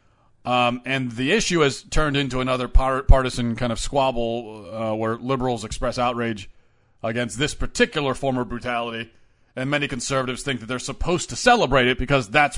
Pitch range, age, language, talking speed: 120-165 Hz, 40-59, English, 165 wpm